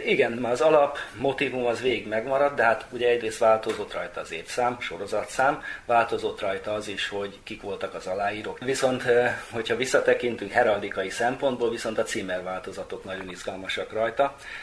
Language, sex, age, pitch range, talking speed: Hungarian, male, 30-49, 105-125 Hz, 150 wpm